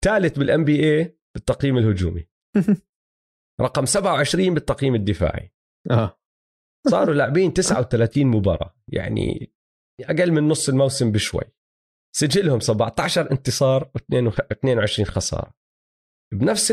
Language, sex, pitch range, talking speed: Arabic, male, 110-150 Hz, 95 wpm